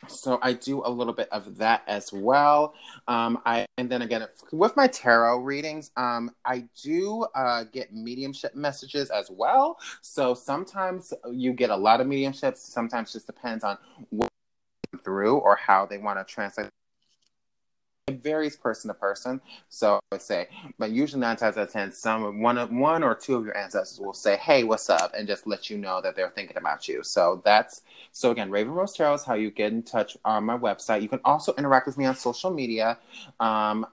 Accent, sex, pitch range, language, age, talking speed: American, male, 110-140 Hz, English, 30-49, 205 wpm